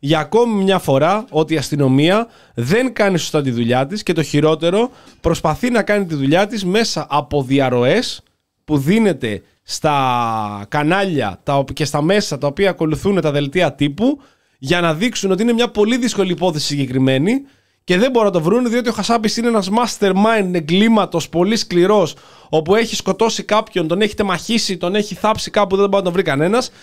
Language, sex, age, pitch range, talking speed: Greek, male, 20-39, 150-215 Hz, 180 wpm